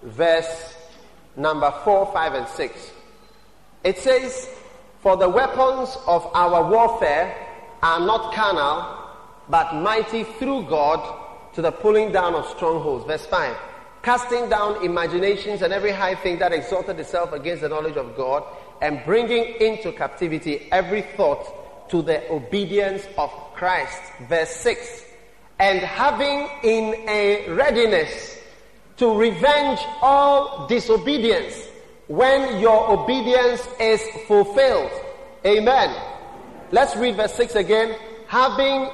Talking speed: 120 wpm